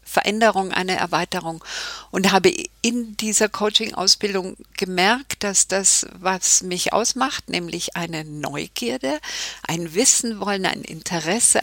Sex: female